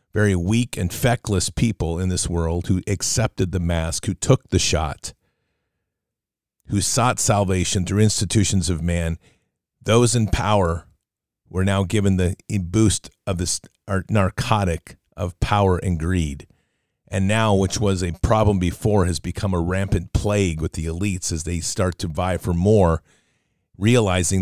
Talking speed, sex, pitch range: 150 wpm, male, 90-105 Hz